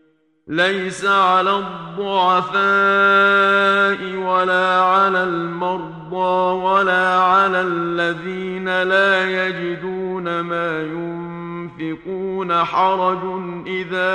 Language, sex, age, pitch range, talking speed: Arabic, male, 50-69, 170-185 Hz, 65 wpm